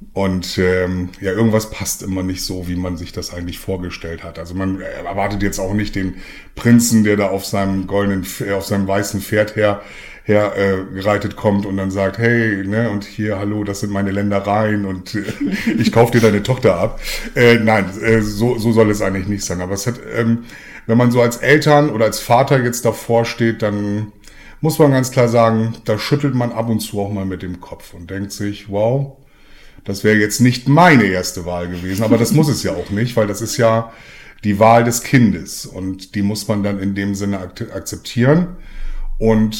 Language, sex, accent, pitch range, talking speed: German, male, German, 95-115 Hz, 205 wpm